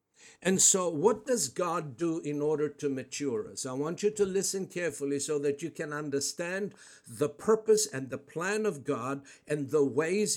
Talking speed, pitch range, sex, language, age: 185 wpm, 140-205 Hz, male, English, 60-79